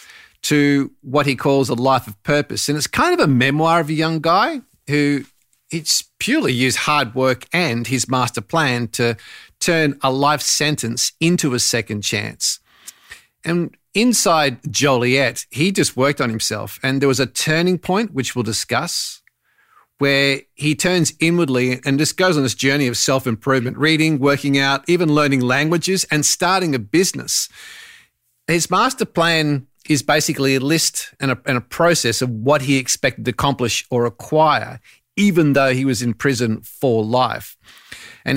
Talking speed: 165 wpm